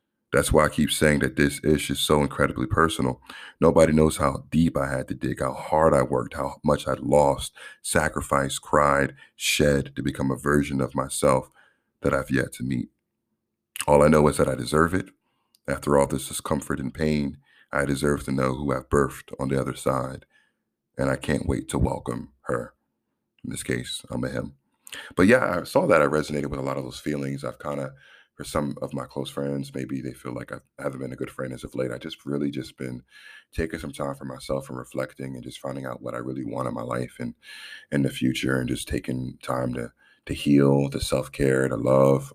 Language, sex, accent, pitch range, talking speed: English, male, American, 65-70 Hz, 215 wpm